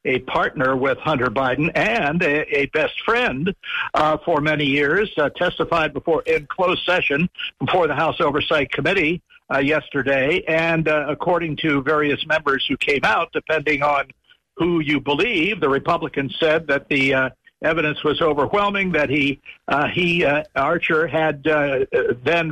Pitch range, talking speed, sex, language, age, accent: 150-175 Hz, 155 wpm, male, English, 60-79, American